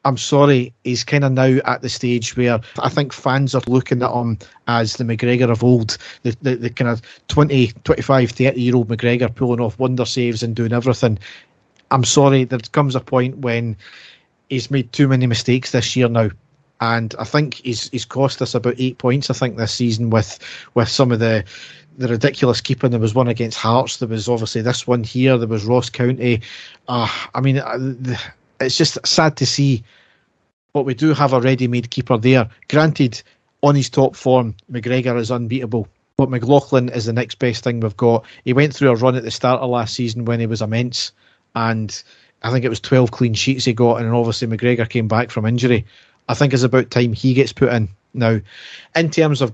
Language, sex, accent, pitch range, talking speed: English, male, British, 115-130 Hz, 205 wpm